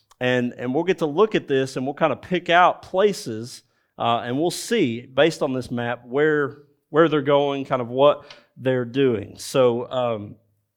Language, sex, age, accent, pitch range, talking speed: English, male, 40-59, American, 120-160 Hz, 190 wpm